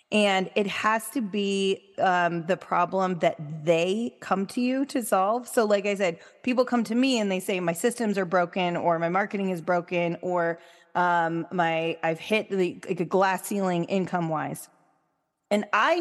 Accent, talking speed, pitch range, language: American, 180 wpm, 170-215 Hz, English